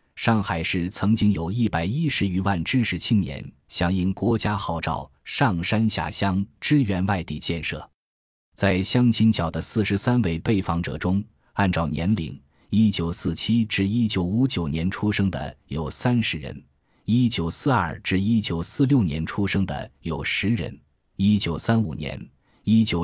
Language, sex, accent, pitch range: Chinese, male, native, 85-110 Hz